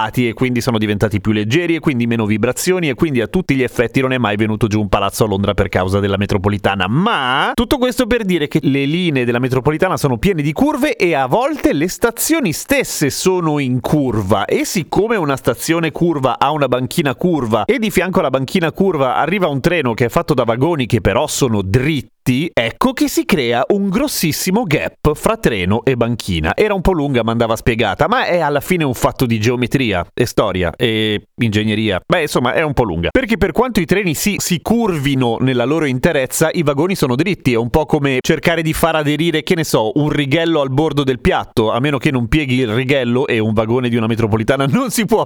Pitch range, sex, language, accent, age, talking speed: 120-175 Hz, male, Italian, native, 30-49, 215 wpm